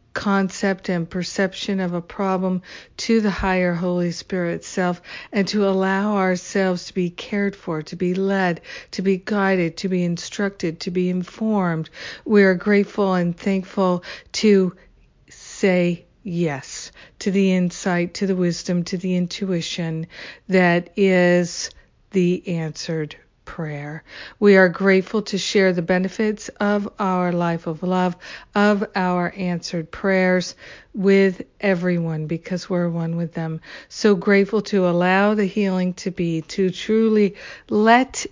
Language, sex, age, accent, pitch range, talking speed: English, female, 60-79, American, 175-200 Hz, 140 wpm